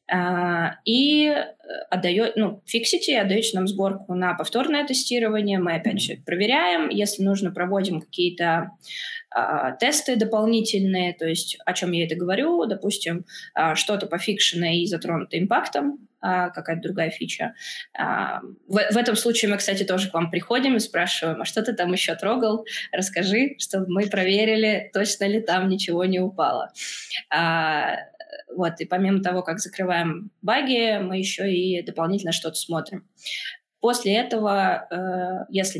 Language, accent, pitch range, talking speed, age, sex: Russian, native, 175-220 Hz, 145 wpm, 20-39, female